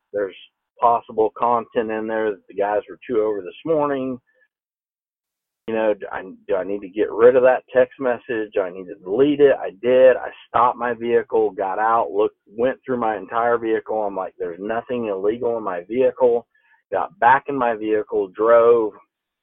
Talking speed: 190 wpm